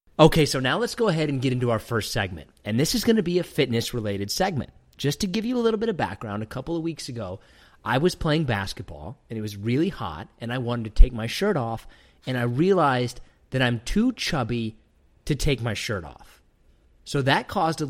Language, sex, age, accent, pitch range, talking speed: English, male, 30-49, American, 110-155 Hz, 230 wpm